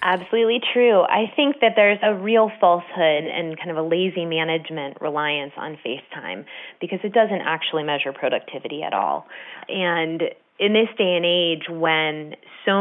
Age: 20-39